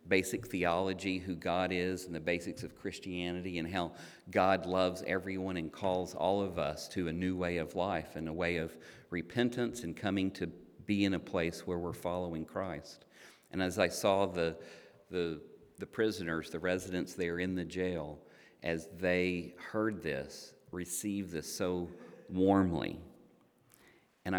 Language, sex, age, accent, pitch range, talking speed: English, male, 50-69, American, 85-95 Hz, 160 wpm